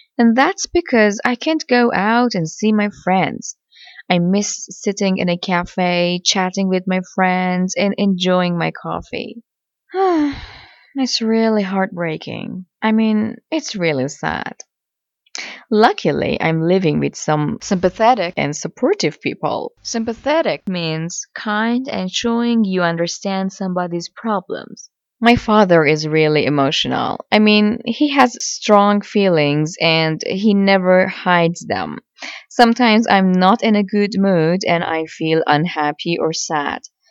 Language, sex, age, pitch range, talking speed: English, female, 20-39, 170-225 Hz, 130 wpm